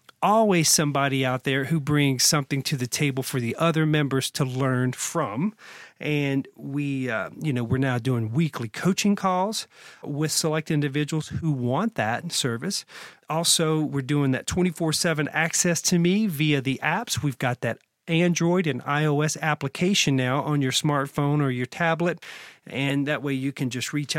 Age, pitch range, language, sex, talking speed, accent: 40-59, 130-170 Hz, English, male, 165 wpm, American